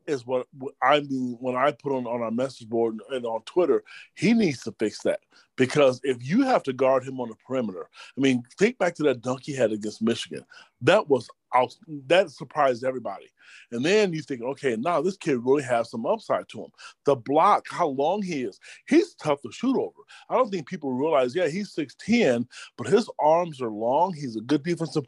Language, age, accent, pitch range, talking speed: English, 30-49, American, 125-160 Hz, 215 wpm